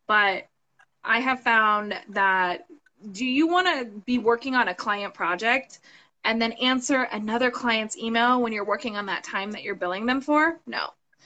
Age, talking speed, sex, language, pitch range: 20-39, 175 wpm, female, English, 220-280 Hz